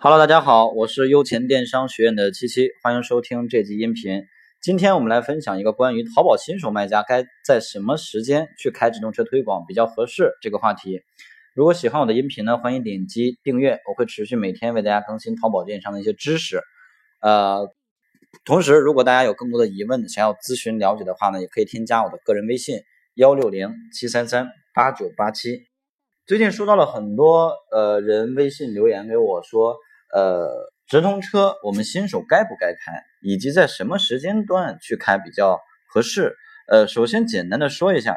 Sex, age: male, 20-39